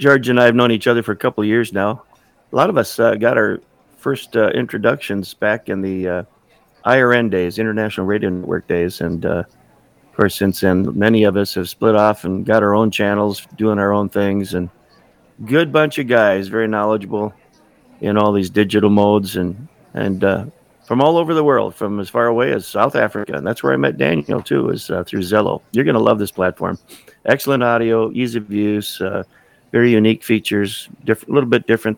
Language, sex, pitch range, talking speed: English, male, 100-120 Hz, 210 wpm